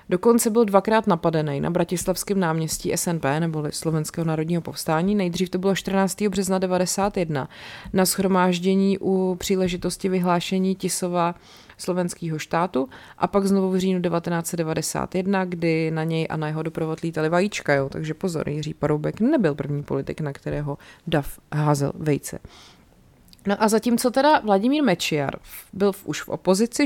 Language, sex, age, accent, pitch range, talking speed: Czech, female, 30-49, native, 155-190 Hz, 145 wpm